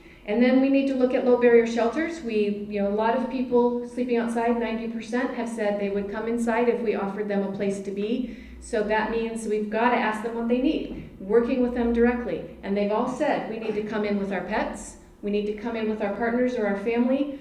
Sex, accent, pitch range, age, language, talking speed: female, American, 205-240 Hz, 40-59, English, 250 wpm